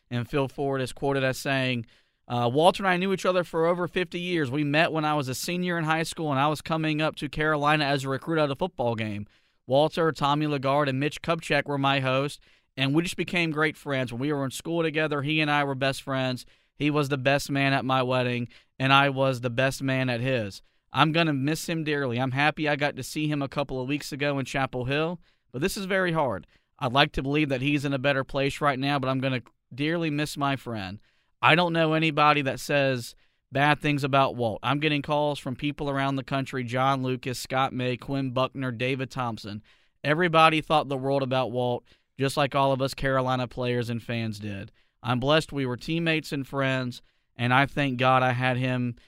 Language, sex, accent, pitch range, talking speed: English, male, American, 130-150 Hz, 230 wpm